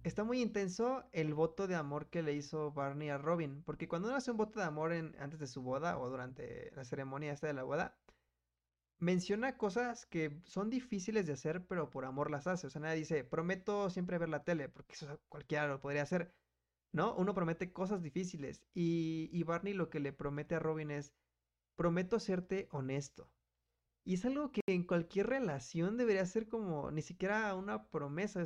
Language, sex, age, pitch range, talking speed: Spanish, male, 20-39, 145-185 Hz, 195 wpm